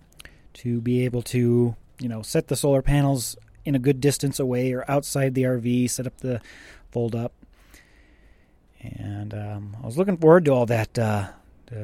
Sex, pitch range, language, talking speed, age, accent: male, 110-140 Hz, English, 170 wpm, 30-49, American